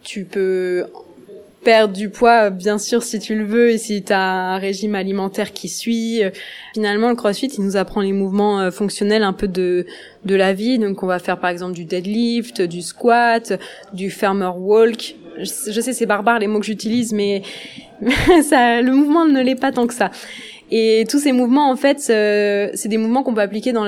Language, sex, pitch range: French, female, 195-235 Hz